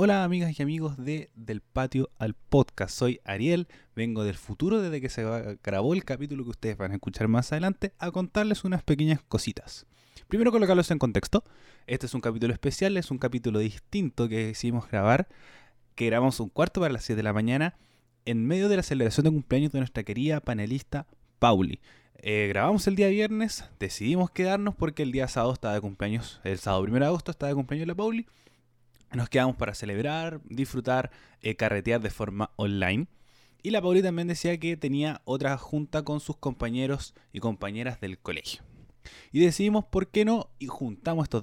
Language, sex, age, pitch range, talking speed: Spanish, male, 20-39, 110-160 Hz, 185 wpm